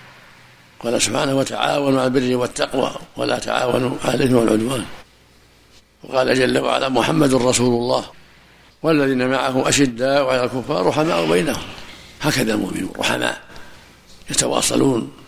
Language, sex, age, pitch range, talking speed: Arabic, male, 60-79, 110-140 Hz, 110 wpm